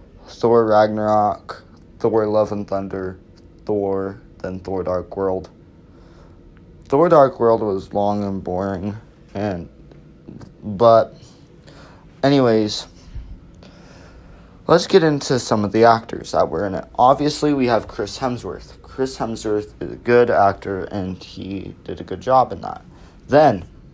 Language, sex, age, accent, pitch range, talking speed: English, male, 20-39, American, 85-115 Hz, 130 wpm